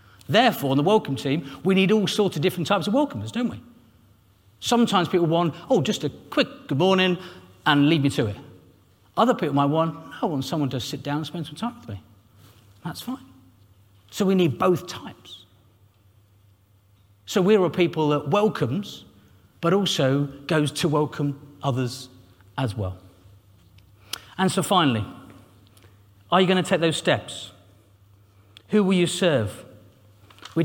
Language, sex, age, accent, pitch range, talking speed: English, male, 40-59, British, 100-170 Hz, 160 wpm